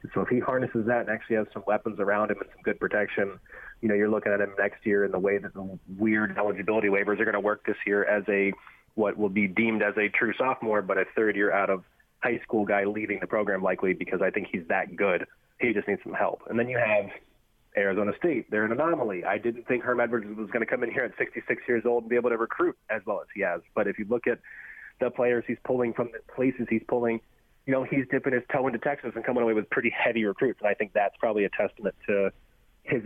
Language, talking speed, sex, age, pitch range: English, 265 wpm, male, 30-49, 100-120 Hz